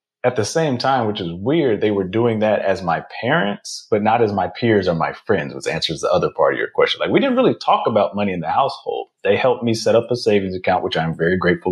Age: 30-49